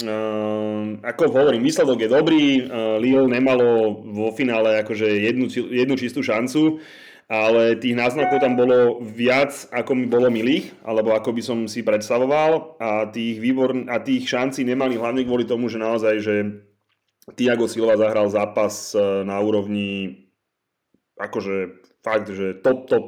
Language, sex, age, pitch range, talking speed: Slovak, male, 30-49, 105-125 Hz, 140 wpm